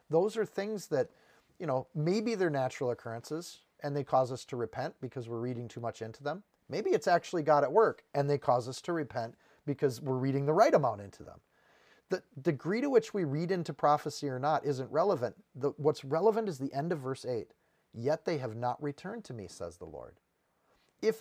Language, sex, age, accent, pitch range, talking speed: English, male, 40-59, American, 140-175 Hz, 210 wpm